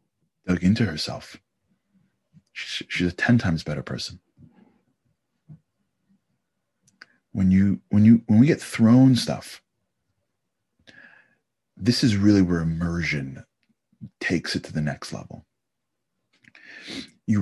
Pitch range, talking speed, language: 80-105 Hz, 105 wpm, English